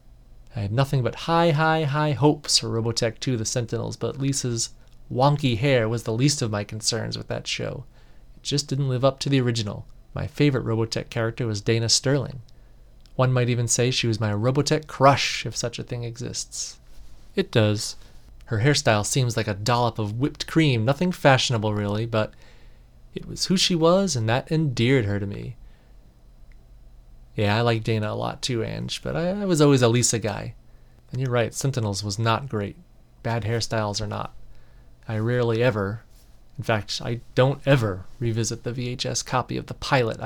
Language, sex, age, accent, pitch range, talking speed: English, male, 30-49, American, 110-140 Hz, 185 wpm